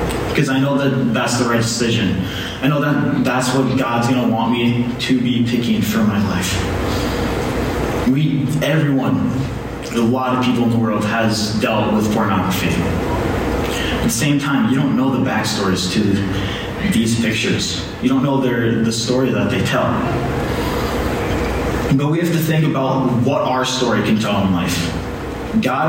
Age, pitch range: 30-49, 105-130 Hz